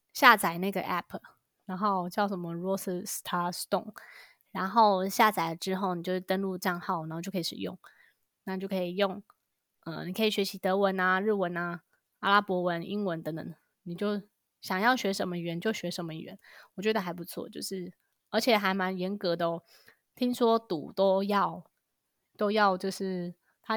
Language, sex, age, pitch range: Chinese, female, 20-39, 180-220 Hz